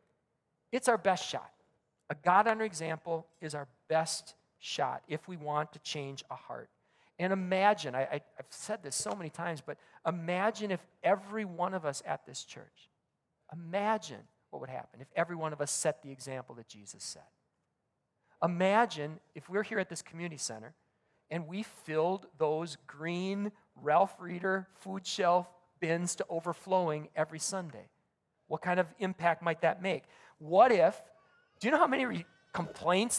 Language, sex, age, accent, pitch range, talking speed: English, male, 40-59, American, 160-210 Hz, 160 wpm